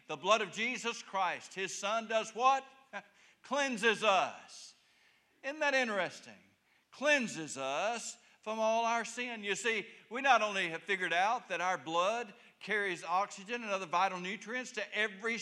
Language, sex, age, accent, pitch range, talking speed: English, male, 60-79, American, 145-240 Hz, 150 wpm